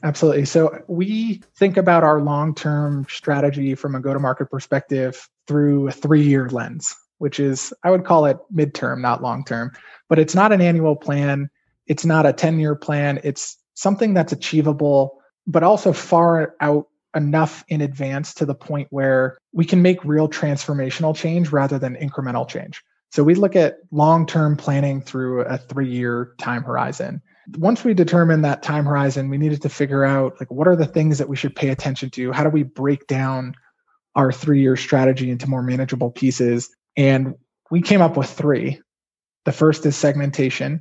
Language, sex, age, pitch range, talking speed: English, male, 20-39, 130-155 Hz, 170 wpm